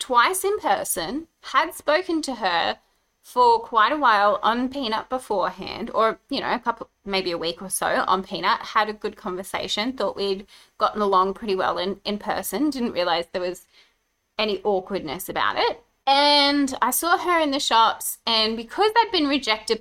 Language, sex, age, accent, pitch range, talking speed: English, female, 20-39, Australian, 200-270 Hz, 180 wpm